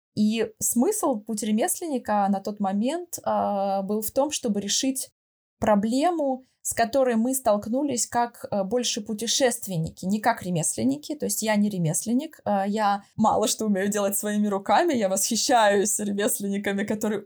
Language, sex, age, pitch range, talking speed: Russian, female, 20-39, 195-245 Hz, 145 wpm